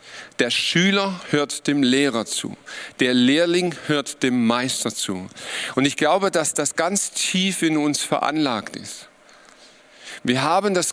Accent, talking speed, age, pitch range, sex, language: German, 145 wpm, 40-59, 135-180 Hz, male, German